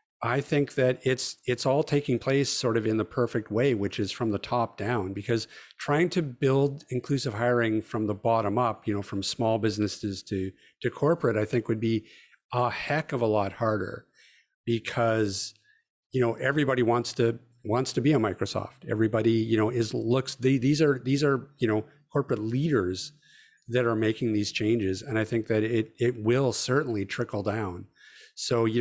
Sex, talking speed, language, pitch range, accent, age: male, 185 wpm, English, 110-125 Hz, American, 50-69